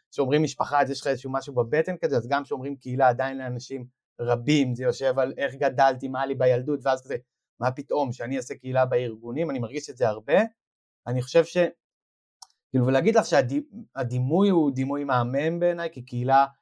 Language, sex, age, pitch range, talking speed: Hebrew, male, 30-49, 135-180 Hz, 175 wpm